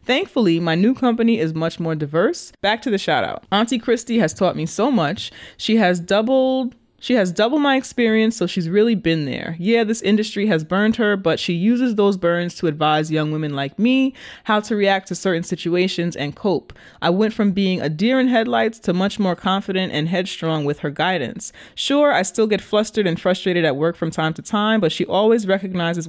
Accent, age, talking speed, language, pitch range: American, 20-39, 210 wpm, English, 165-225 Hz